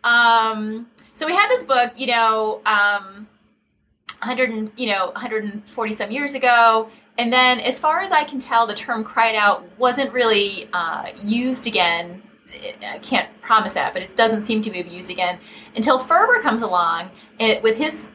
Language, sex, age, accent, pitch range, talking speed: English, female, 30-49, American, 200-250 Hz, 170 wpm